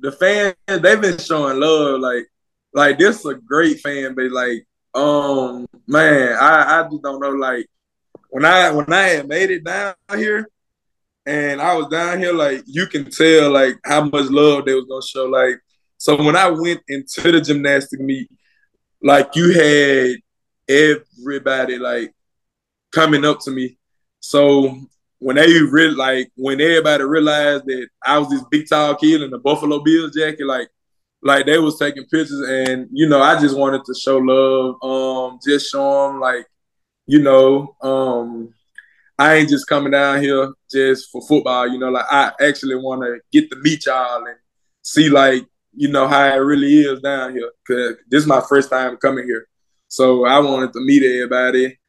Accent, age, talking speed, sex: American, 20-39, 175 wpm, male